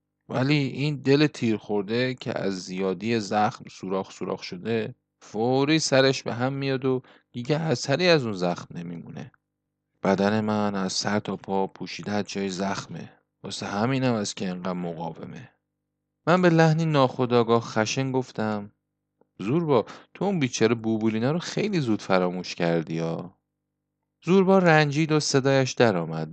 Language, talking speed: Persian, 145 wpm